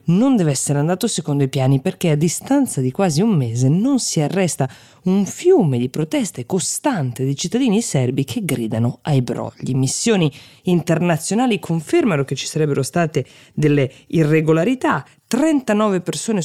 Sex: female